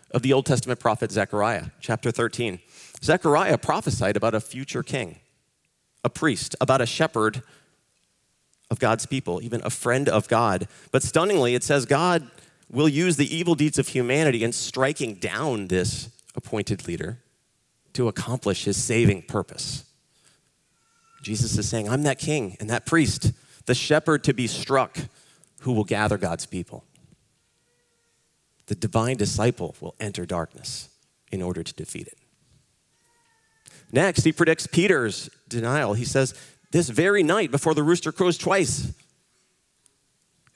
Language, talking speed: English, 140 wpm